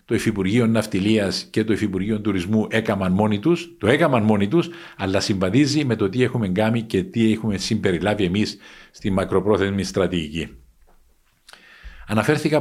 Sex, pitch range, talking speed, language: male, 100-125 Hz, 145 wpm, Greek